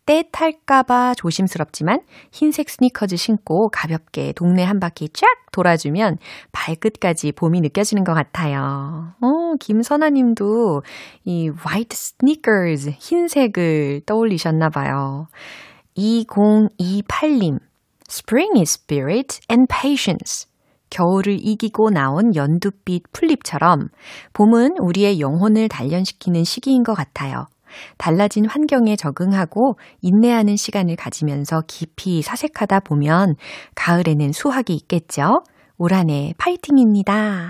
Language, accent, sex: Korean, native, female